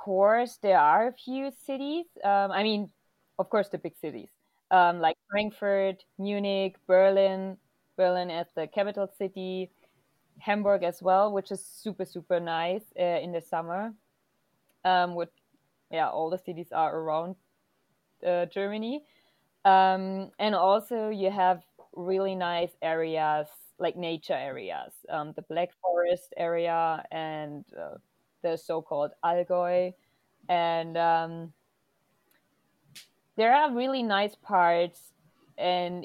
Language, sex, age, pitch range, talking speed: English, female, 20-39, 170-200 Hz, 125 wpm